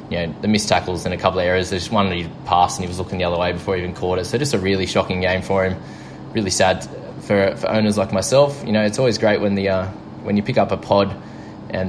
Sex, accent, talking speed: male, Australian, 290 wpm